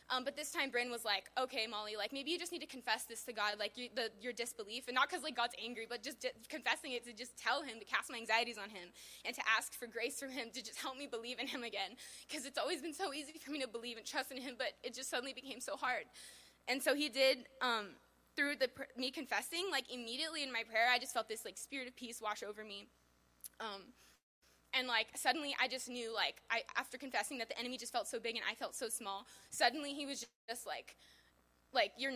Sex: female